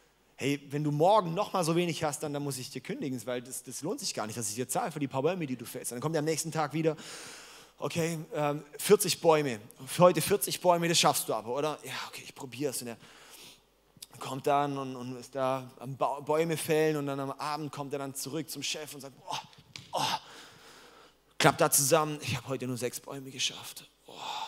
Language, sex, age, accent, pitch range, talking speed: German, male, 20-39, German, 135-170 Hz, 235 wpm